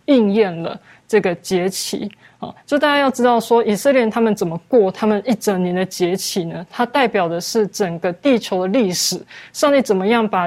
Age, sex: 20-39, female